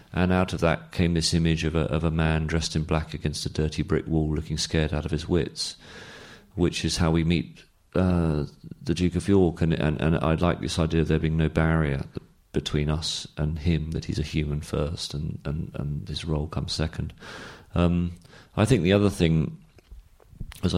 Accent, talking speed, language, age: British, 200 wpm, English, 40-59